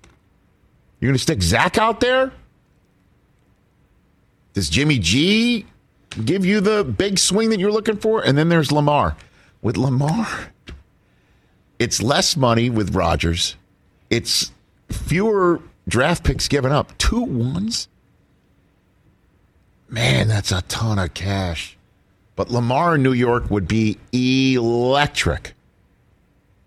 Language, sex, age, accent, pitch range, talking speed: English, male, 50-69, American, 95-135 Hz, 115 wpm